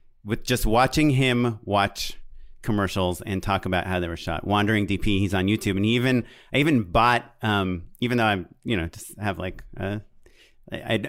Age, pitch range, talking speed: 30-49, 100-125 Hz, 180 wpm